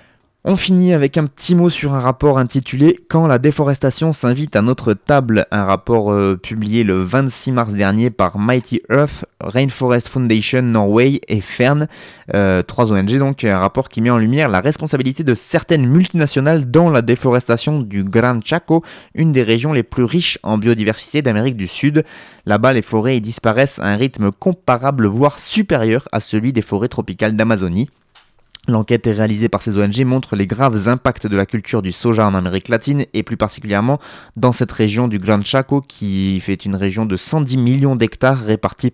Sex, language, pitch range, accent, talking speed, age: male, French, 105-135 Hz, French, 180 wpm, 20-39